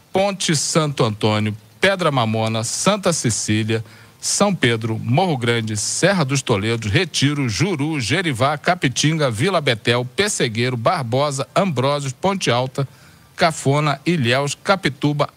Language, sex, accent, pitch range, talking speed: Portuguese, male, Brazilian, 125-165 Hz, 110 wpm